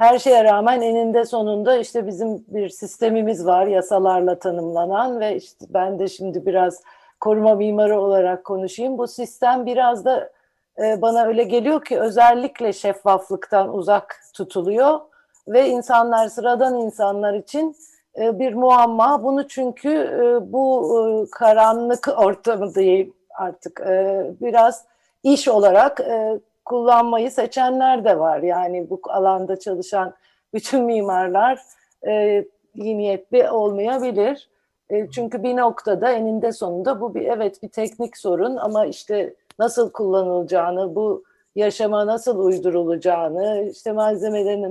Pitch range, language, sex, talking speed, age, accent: 195-245 Hz, Turkish, female, 115 wpm, 50-69, native